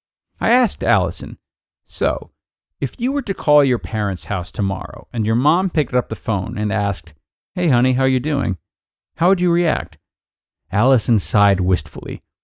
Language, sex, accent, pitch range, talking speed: English, male, American, 105-170 Hz, 170 wpm